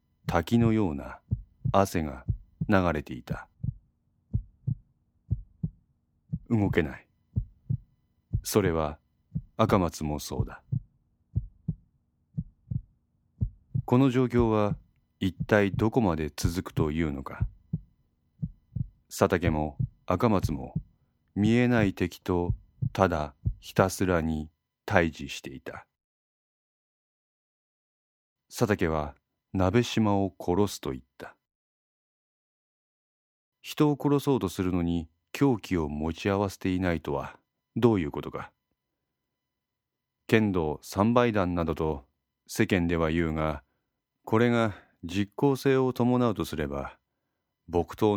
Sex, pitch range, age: male, 80-110 Hz, 40-59